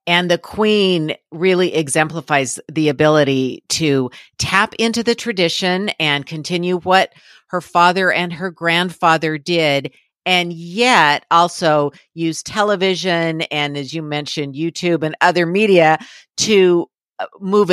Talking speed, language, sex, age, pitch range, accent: 120 wpm, English, female, 50-69, 155-205 Hz, American